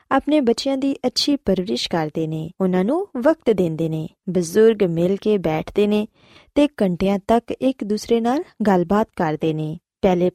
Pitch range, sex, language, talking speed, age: 180-265 Hz, female, Punjabi, 155 wpm, 20-39